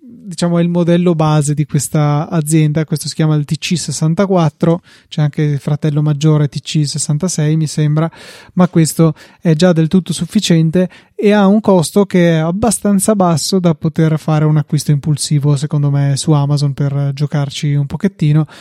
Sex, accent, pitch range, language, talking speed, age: male, native, 150-170 Hz, Italian, 160 wpm, 20-39